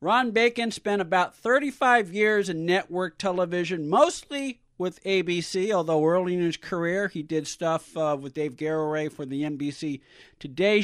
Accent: American